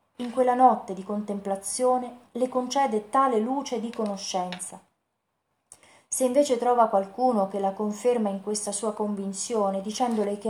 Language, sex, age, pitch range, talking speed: Italian, female, 30-49, 200-250 Hz, 135 wpm